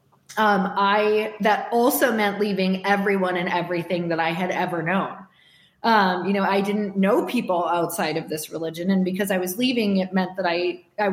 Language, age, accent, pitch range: English, 20-39, American, 185-230 Hz